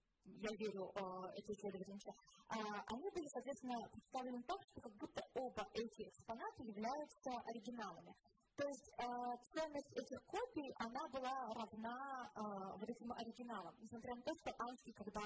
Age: 30-49